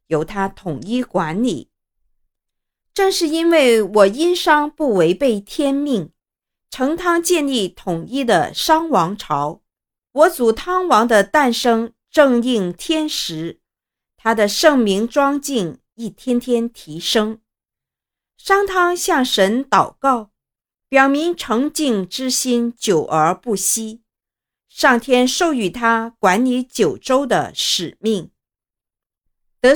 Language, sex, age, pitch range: Chinese, female, 50-69, 205-285 Hz